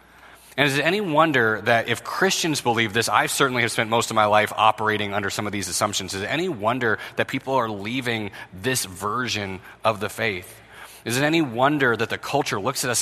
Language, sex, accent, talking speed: English, male, American, 215 wpm